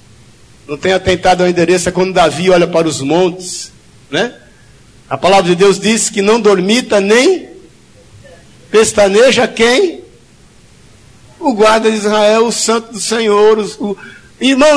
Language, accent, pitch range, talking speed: Portuguese, Brazilian, 215-295 Hz, 140 wpm